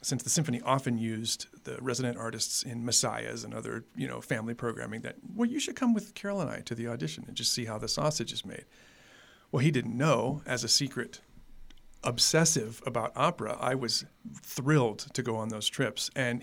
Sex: male